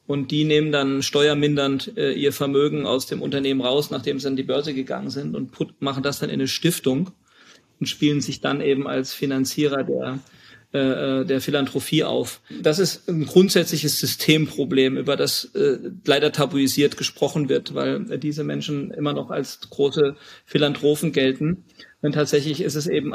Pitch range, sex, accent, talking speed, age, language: 140-155 Hz, male, German, 160 wpm, 40-59, German